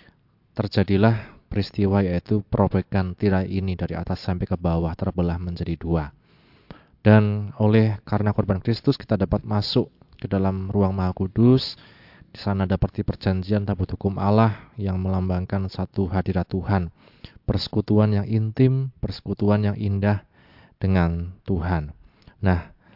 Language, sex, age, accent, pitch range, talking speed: Indonesian, male, 20-39, native, 95-110 Hz, 125 wpm